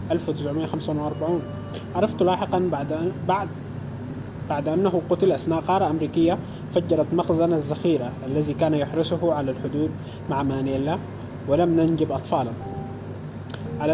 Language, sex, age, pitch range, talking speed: Arabic, male, 20-39, 135-170 Hz, 110 wpm